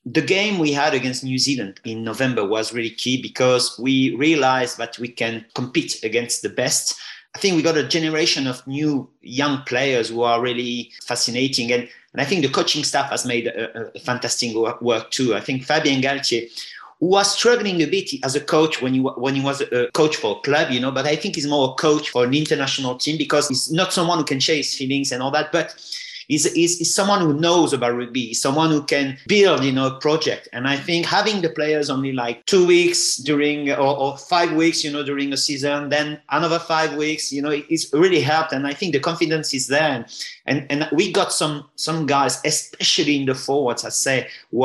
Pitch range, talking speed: 130-160 Hz, 225 wpm